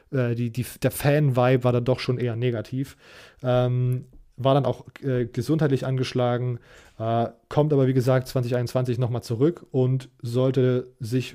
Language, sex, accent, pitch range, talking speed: German, male, German, 120-130 Hz, 150 wpm